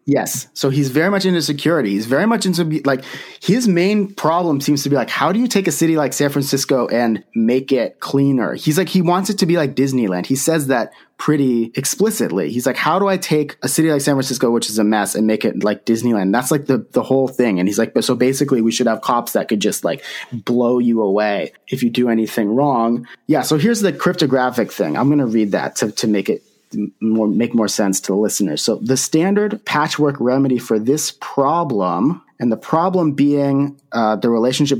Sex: male